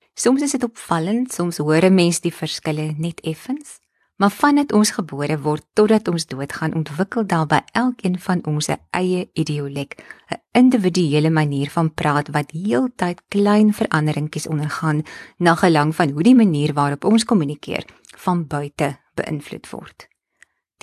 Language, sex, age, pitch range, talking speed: English, female, 20-39, 150-205 Hz, 155 wpm